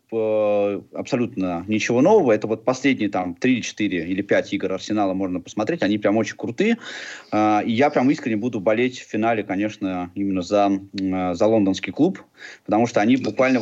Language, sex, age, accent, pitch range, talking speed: Russian, male, 20-39, native, 100-125 Hz, 160 wpm